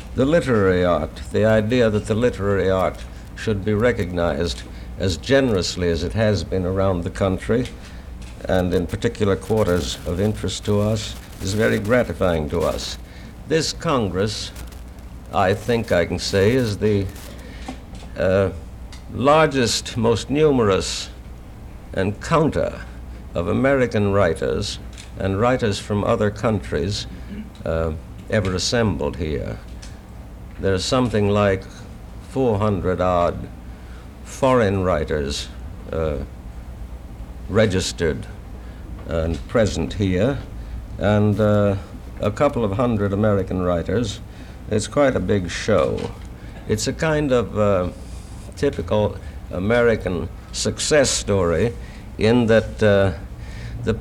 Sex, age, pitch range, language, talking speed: male, 60-79, 85-110 Hz, English, 110 wpm